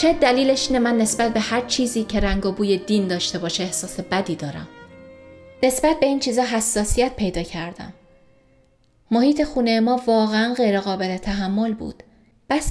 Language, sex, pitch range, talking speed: Persian, female, 215-275 Hz, 155 wpm